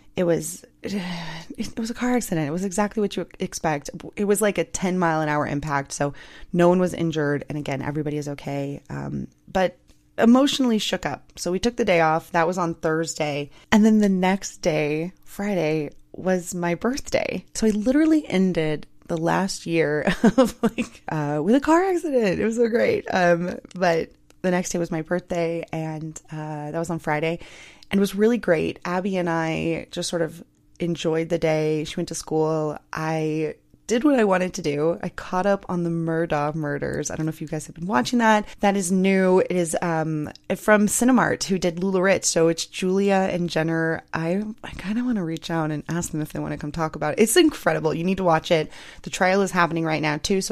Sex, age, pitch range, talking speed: female, 20-39, 155-190 Hz, 215 wpm